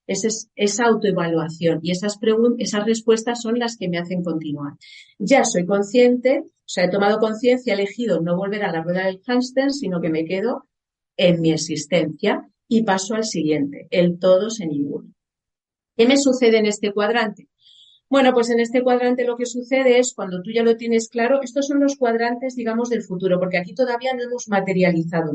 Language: Spanish